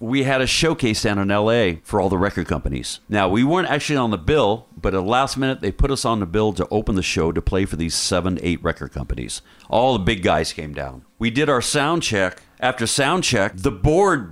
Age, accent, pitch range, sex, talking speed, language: 50-69, American, 80-120 Hz, male, 245 wpm, English